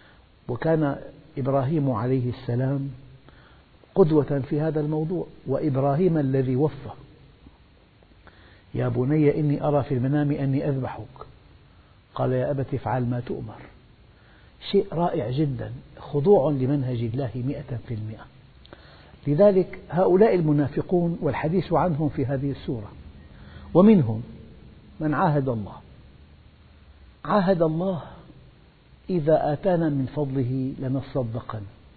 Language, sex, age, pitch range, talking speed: Arabic, male, 50-69, 115-155 Hz, 100 wpm